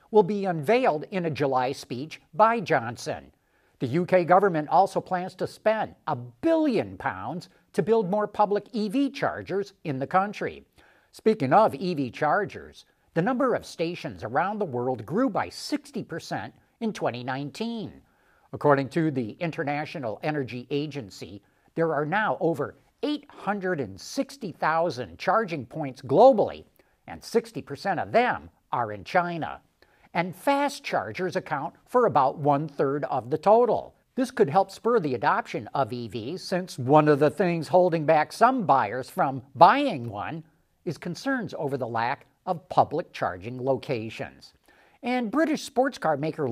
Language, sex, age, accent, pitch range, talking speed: English, male, 60-79, American, 140-205 Hz, 140 wpm